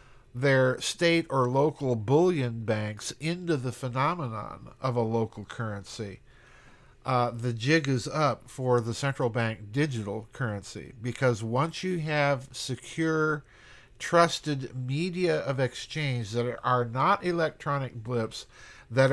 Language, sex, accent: English, male, American